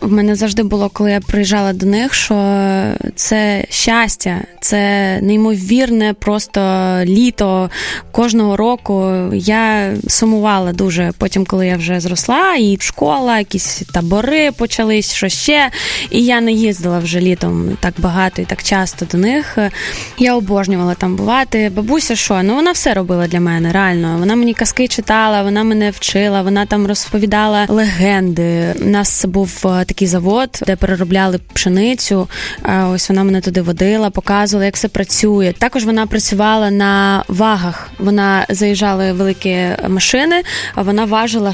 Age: 20-39